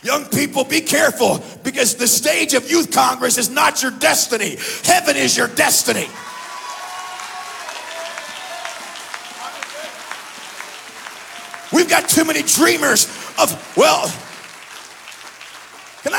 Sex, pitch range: male, 260-355 Hz